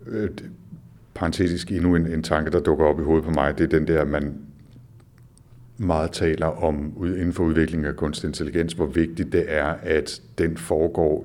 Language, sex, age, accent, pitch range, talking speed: Danish, male, 60-79, native, 75-95 Hz, 180 wpm